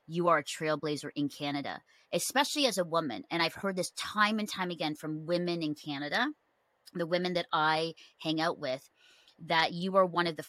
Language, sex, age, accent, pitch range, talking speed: English, female, 30-49, American, 145-175 Hz, 200 wpm